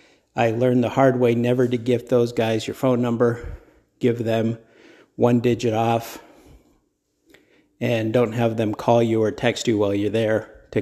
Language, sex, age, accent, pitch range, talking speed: English, male, 50-69, American, 110-125 Hz, 170 wpm